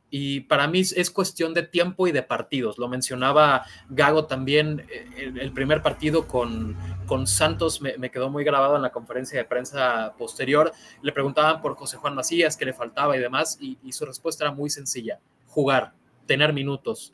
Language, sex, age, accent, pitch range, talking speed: Spanish, male, 20-39, Mexican, 125-155 Hz, 190 wpm